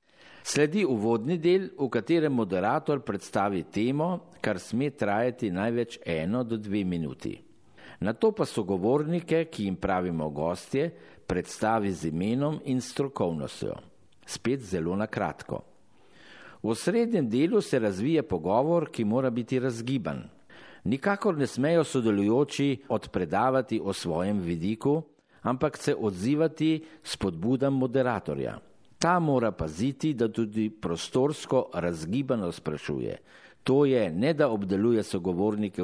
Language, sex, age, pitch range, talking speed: Italian, male, 50-69, 100-145 Hz, 115 wpm